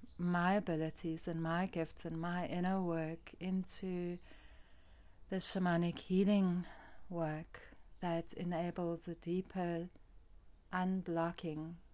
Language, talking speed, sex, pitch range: English, 95 wpm, female, 160-180 Hz